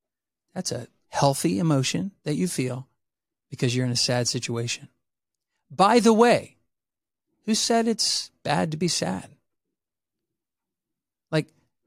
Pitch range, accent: 125-150 Hz, American